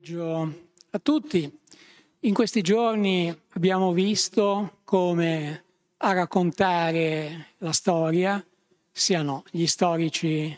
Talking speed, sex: 90 wpm, male